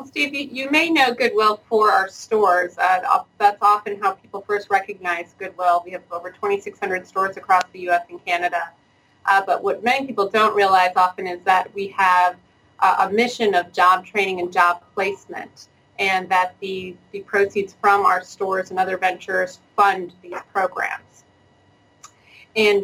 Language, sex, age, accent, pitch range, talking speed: English, female, 30-49, American, 180-225 Hz, 165 wpm